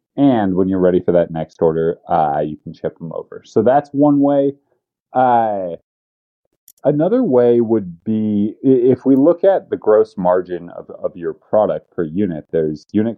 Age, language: 30-49, English